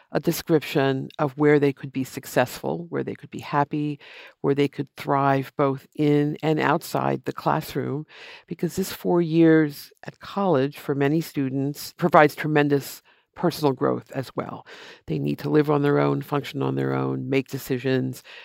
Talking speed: 165 wpm